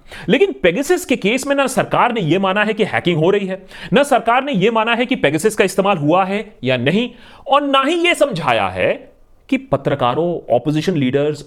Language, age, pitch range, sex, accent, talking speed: Hindi, 30-49, 150-235 Hz, male, native, 205 wpm